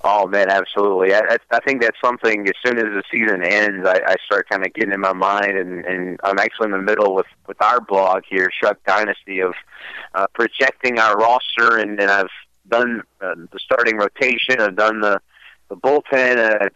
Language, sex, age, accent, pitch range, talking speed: English, male, 30-49, American, 95-115 Hz, 205 wpm